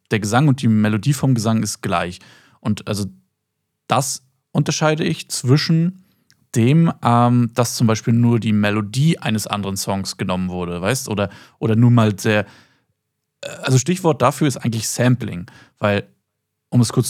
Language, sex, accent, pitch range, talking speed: German, male, German, 110-140 Hz, 155 wpm